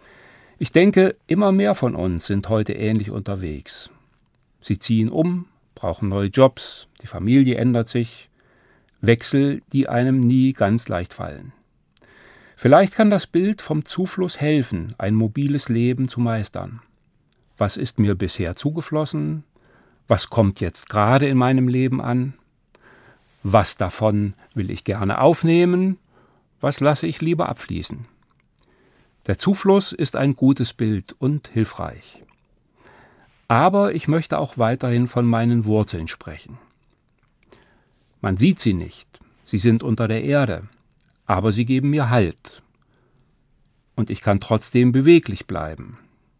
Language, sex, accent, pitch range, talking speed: German, male, German, 105-140 Hz, 130 wpm